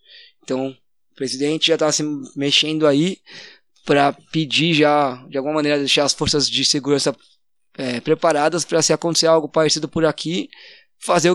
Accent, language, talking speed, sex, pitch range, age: Brazilian, Portuguese, 155 wpm, male, 145-170 Hz, 20-39